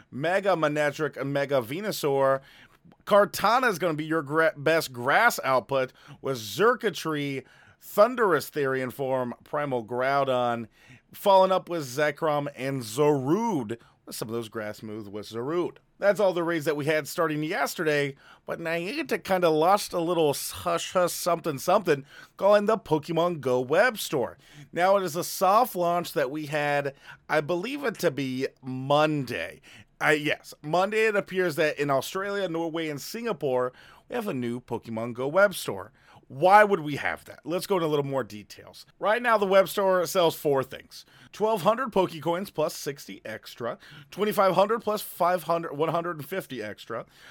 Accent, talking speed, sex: American, 160 wpm, male